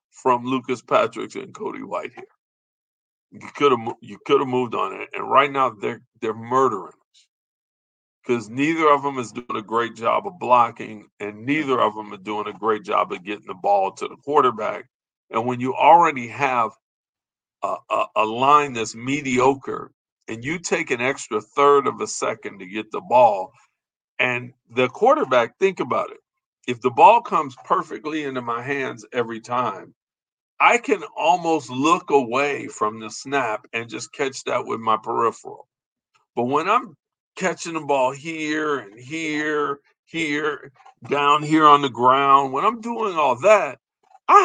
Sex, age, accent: male, 50-69, American